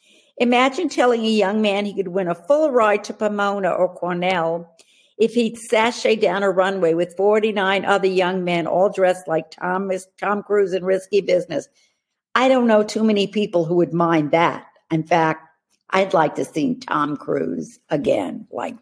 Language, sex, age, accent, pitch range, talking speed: English, female, 50-69, American, 185-230 Hz, 170 wpm